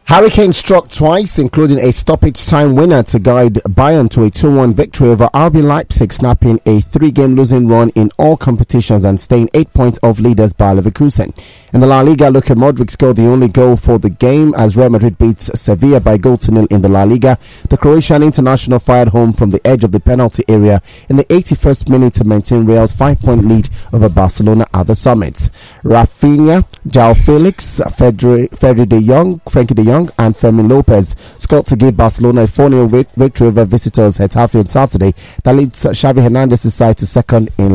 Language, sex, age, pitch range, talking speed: English, male, 30-49, 110-135 Hz, 185 wpm